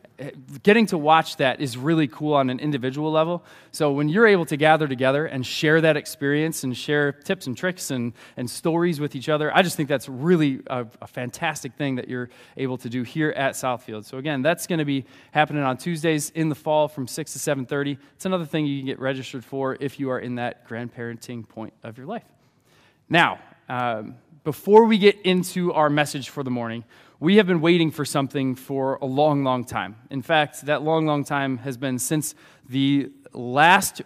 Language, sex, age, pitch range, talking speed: English, male, 20-39, 135-170 Hz, 205 wpm